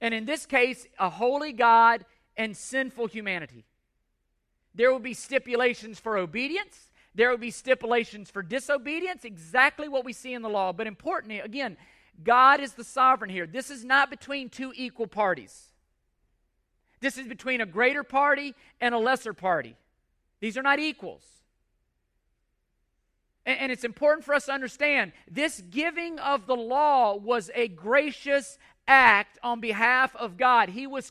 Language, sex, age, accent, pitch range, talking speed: English, male, 40-59, American, 200-270 Hz, 155 wpm